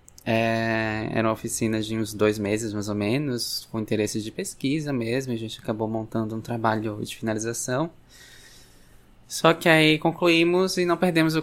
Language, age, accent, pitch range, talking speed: Portuguese, 20-39, Brazilian, 110-130 Hz, 170 wpm